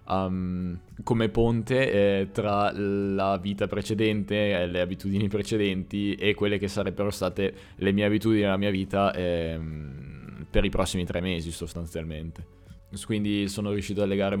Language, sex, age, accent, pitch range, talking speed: Italian, male, 20-39, native, 90-105 Hz, 145 wpm